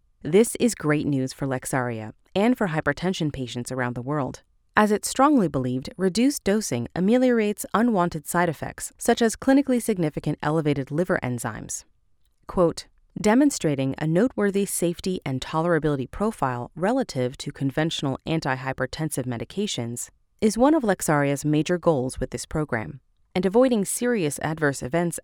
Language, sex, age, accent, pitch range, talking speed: English, female, 30-49, American, 130-195 Hz, 135 wpm